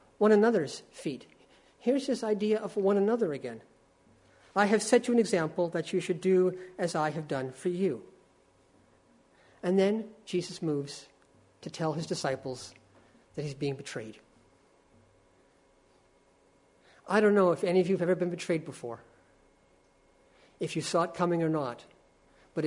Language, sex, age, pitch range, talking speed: English, male, 50-69, 145-190 Hz, 155 wpm